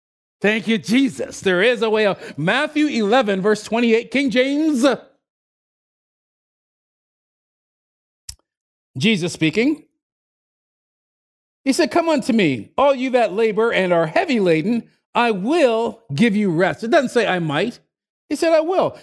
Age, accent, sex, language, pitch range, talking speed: 40-59, American, male, English, 185-270 Hz, 135 wpm